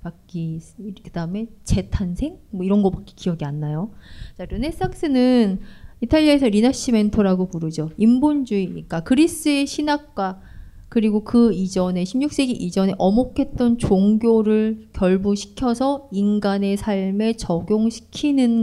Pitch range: 185-250 Hz